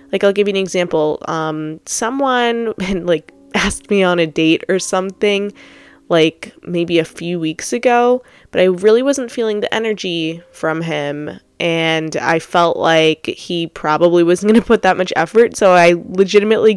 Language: English